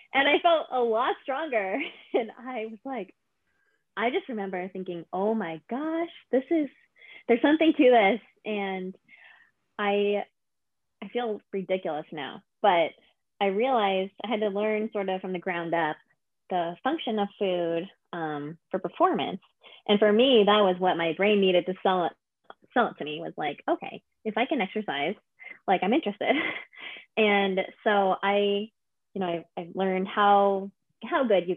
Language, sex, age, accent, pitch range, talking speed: English, female, 20-39, American, 185-230 Hz, 165 wpm